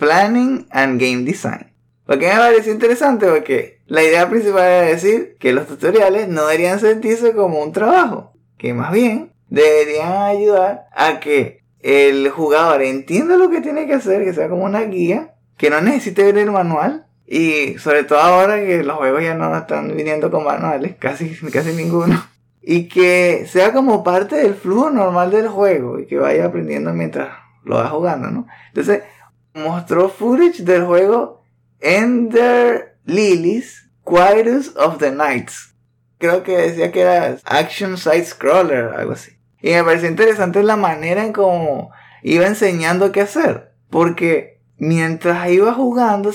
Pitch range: 155-215 Hz